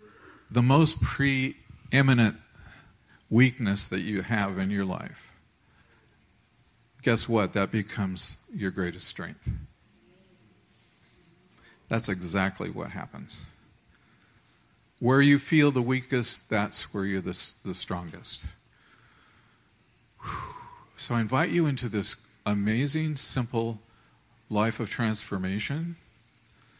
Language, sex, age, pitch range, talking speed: English, male, 50-69, 100-125 Hz, 95 wpm